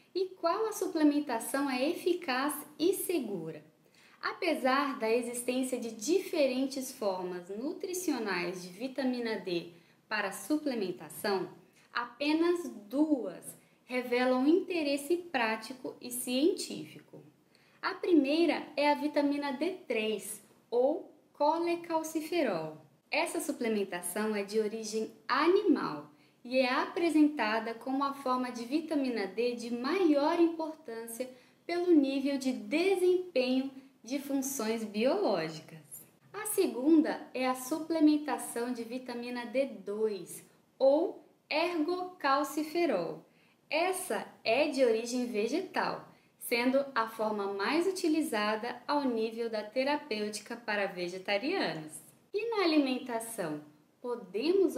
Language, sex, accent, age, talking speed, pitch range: Portuguese, female, Brazilian, 10-29, 100 wpm, 220-315 Hz